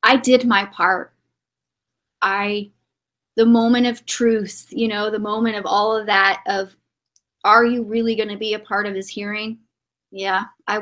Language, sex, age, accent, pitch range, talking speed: English, female, 30-49, American, 195-225 Hz, 170 wpm